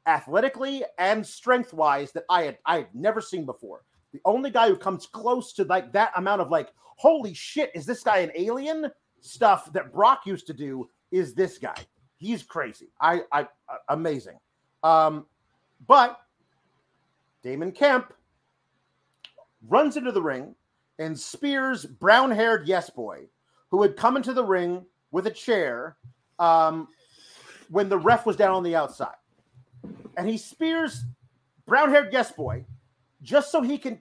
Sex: male